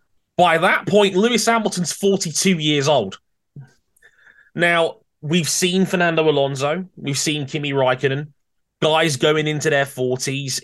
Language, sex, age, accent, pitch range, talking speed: English, male, 20-39, British, 120-140 Hz, 125 wpm